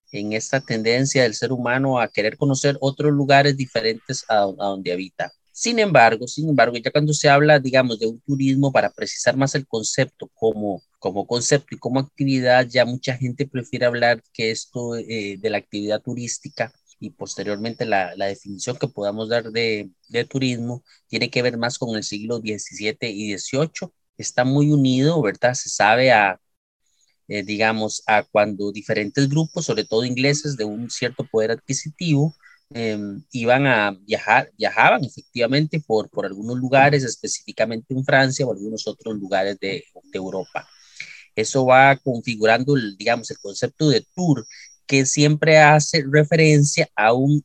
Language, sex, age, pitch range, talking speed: Spanish, male, 30-49, 110-140 Hz, 160 wpm